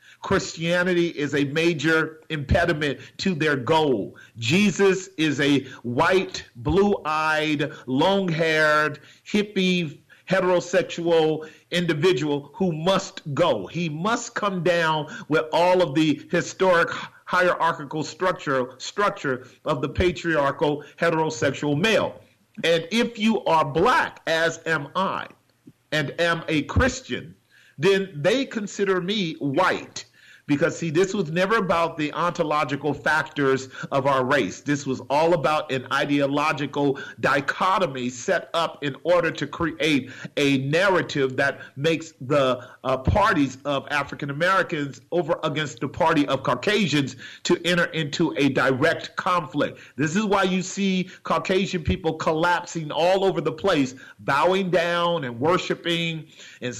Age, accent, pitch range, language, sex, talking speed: 40-59, American, 145-180 Hz, English, male, 125 wpm